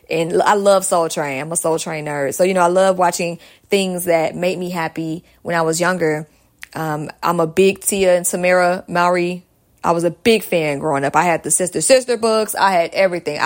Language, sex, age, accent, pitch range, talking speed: English, female, 20-39, American, 160-195 Hz, 220 wpm